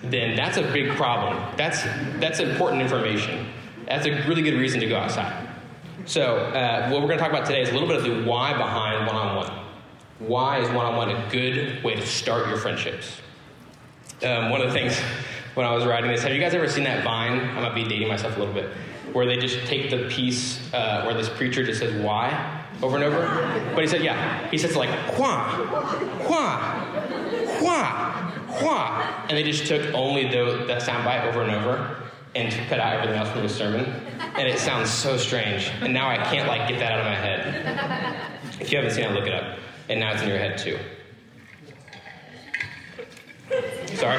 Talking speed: 200 wpm